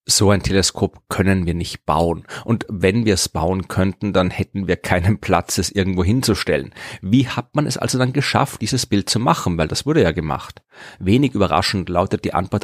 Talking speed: 200 wpm